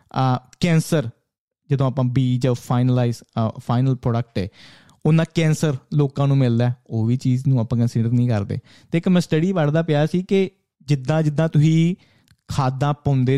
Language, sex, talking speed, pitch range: Punjabi, male, 150 wpm, 130-170 Hz